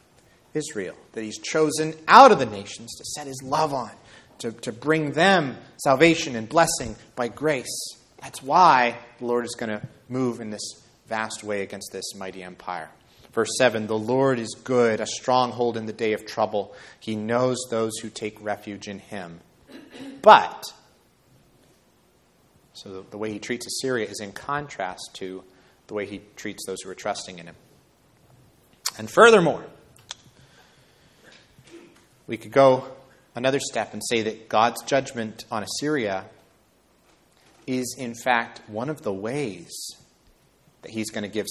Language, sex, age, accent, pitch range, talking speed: English, male, 30-49, American, 110-135 Hz, 155 wpm